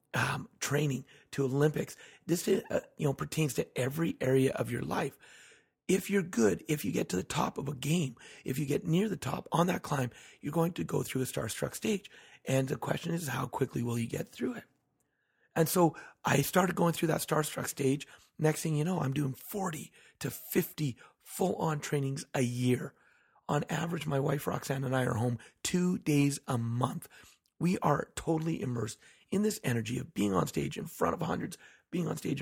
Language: English